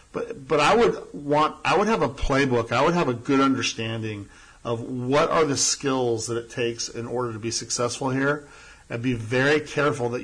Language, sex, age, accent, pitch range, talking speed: English, male, 40-59, American, 115-140 Hz, 205 wpm